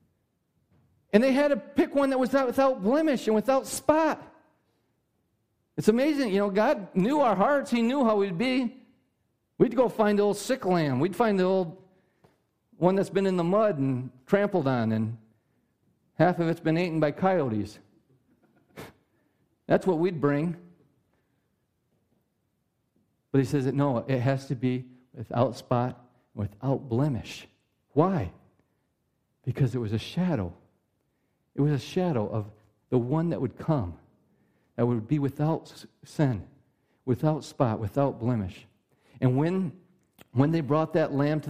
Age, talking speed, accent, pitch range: 50-69, 150 wpm, American, 125-190 Hz